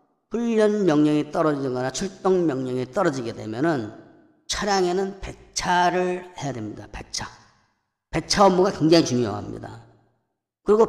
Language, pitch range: Korean, 135-200 Hz